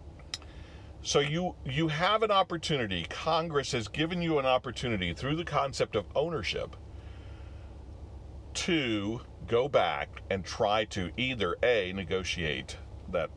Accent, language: American, English